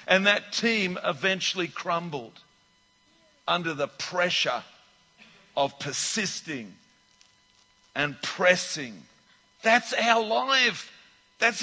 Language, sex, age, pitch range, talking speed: English, male, 50-69, 165-230 Hz, 85 wpm